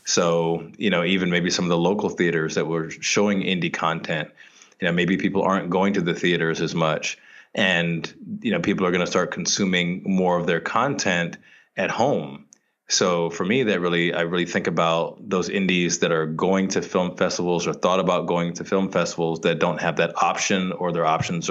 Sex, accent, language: male, American, English